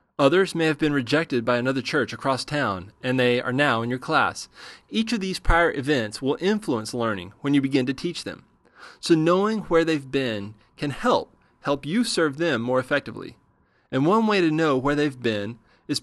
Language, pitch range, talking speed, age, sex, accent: English, 125-170 Hz, 200 wpm, 30-49, male, American